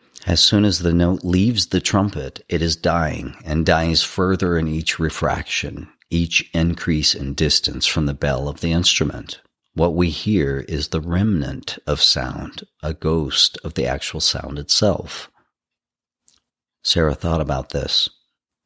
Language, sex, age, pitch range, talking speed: English, male, 40-59, 75-85 Hz, 150 wpm